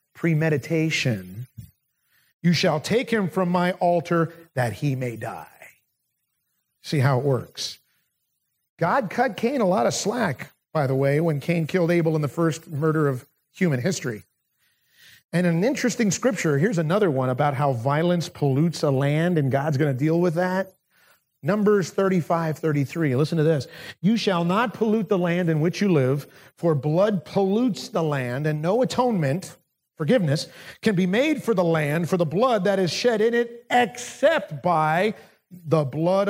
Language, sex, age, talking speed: English, male, 50-69, 165 wpm